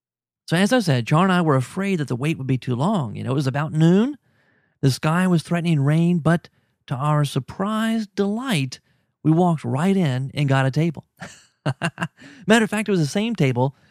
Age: 30-49